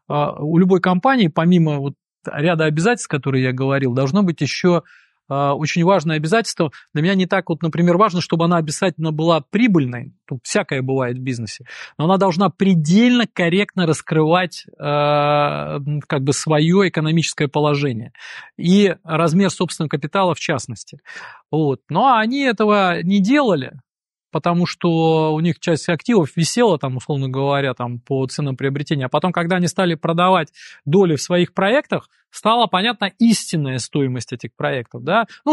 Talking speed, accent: 135 wpm, native